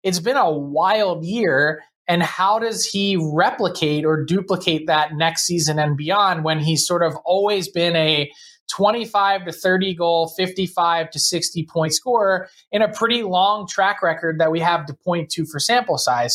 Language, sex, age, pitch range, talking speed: English, male, 20-39, 155-185 Hz, 175 wpm